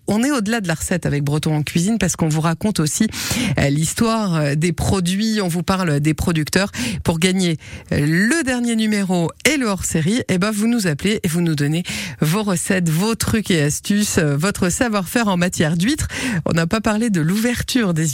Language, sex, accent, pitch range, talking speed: French, female, French, 155-220 Hz, 190 wpm